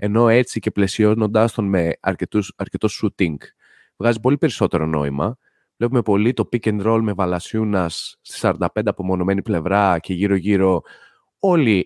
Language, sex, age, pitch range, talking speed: Greek, male, 20-39, 95-120 Hz, 140 wpm